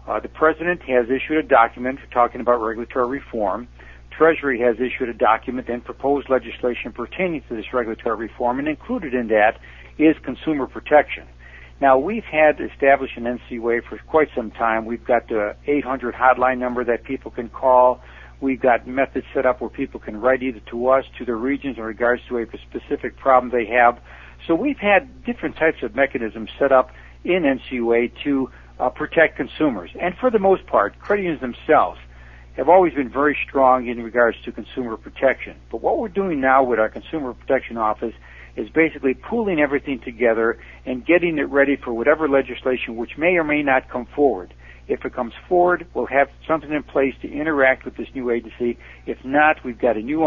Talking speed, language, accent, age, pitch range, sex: 185 wpm, English, American, 60-79, 115-140 Hz, male